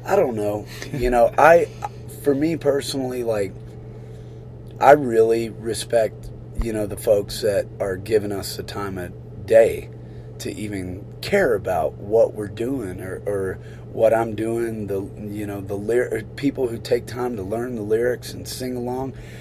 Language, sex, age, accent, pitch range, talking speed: English, male, 30-49, American, 105-130 Hz, 165 wpm